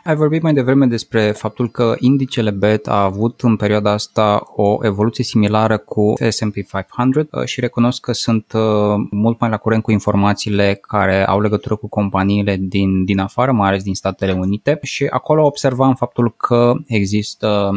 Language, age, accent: Romanian, 20-39, native